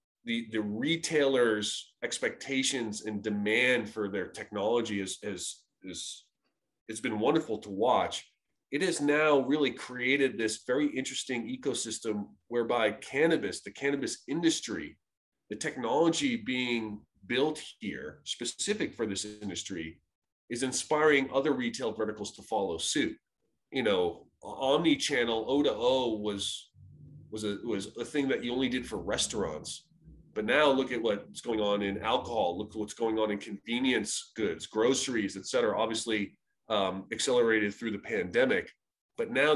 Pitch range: 105-135 Hz